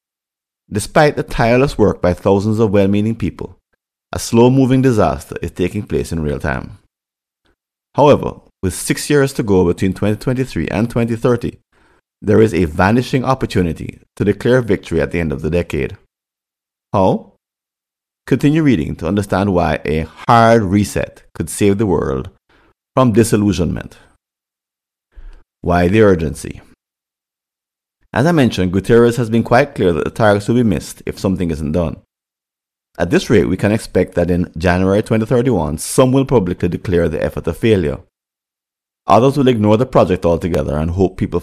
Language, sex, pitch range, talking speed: English, male, 90-120 Hz, 150 wpm